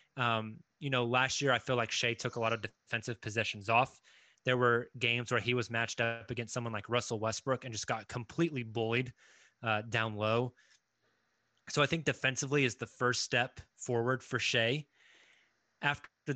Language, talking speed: English, 180 wpm